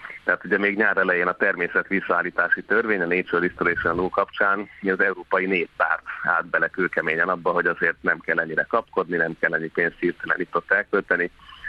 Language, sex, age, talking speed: Hungarian, male, 30-49, 185 wpm